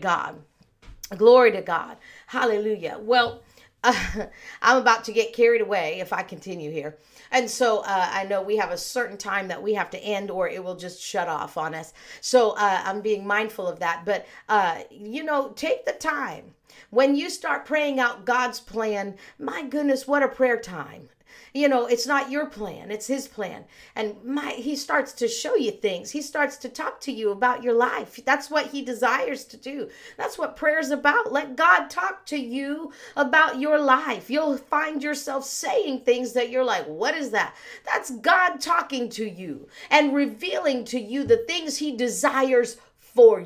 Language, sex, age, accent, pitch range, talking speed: English, female, 50-69, American, 200-290 Hz, 190 wpm